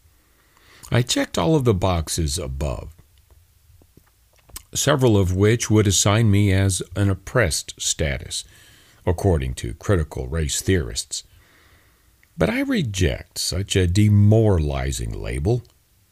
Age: 50-69